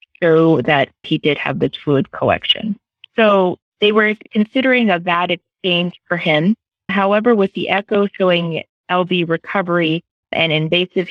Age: 30-49